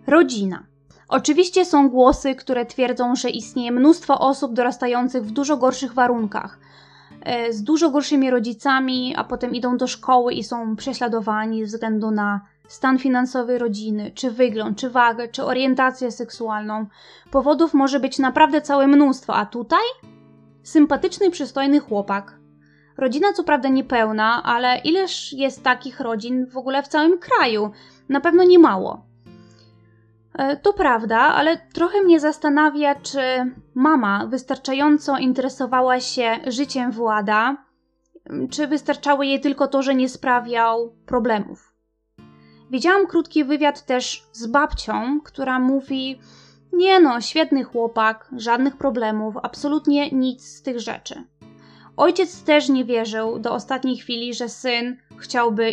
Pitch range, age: 235-285 Hz, 20-39